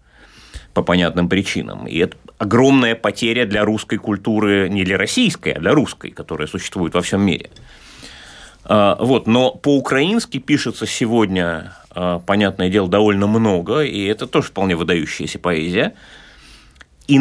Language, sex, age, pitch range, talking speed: Russian, male, 30-49, 95-135 Hz, 125 wpm